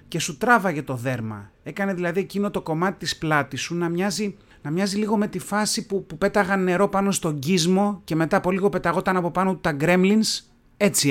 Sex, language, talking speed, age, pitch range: male, Greek, 200 wpm, 30-49, 150-200 Hz